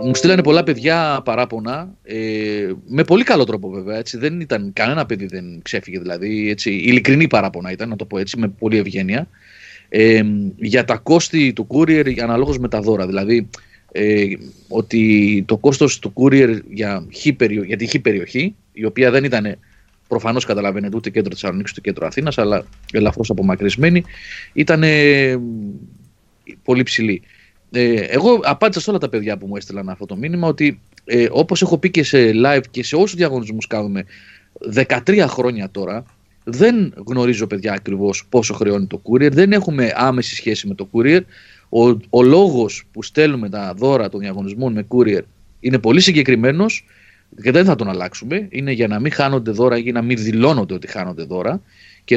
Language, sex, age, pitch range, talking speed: Greek, male, 30-49, 105-135 Hz, 170 wpm